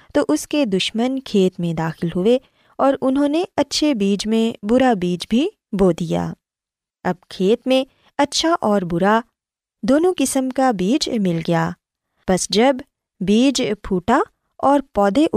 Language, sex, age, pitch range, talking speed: Urdu, female, 20-39, 190-275 Hz, 145 wpm